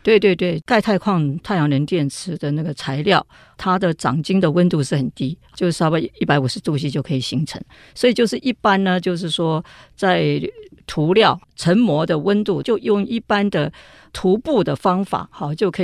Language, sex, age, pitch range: Chinese, female, 50-69, 150-200 Hz